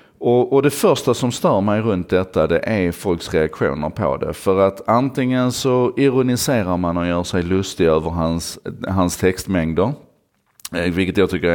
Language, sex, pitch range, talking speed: Swedish, male, 85-100 Hz, 165 wpm